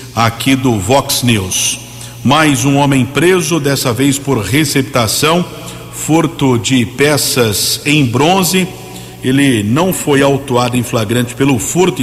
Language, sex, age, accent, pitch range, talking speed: Portuguese, male, 50-69, Brazilian, 125-145 Hz, 125 wpm